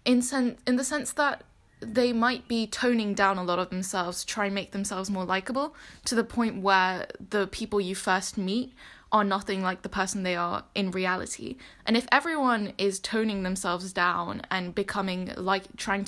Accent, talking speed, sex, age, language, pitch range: British, 190 wpm, female, 10-29, English, 190-240 Hz